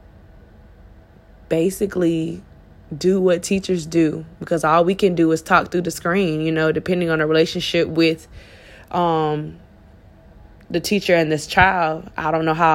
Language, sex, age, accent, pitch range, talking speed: English, female, 20-39, American, 160-180 Hz, 150 wpm